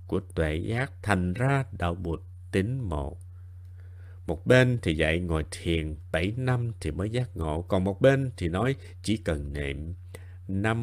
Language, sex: Vietnamese, male